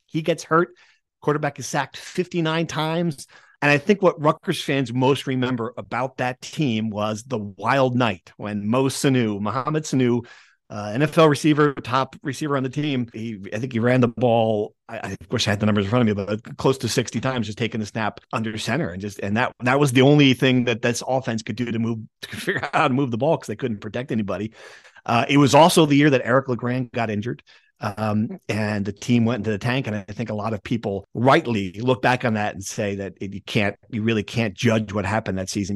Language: English